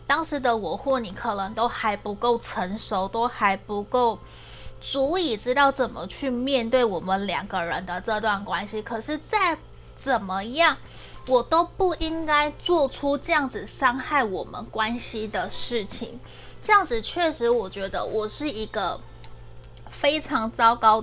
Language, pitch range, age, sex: Chinese, 210-275 Hz, 20-39, female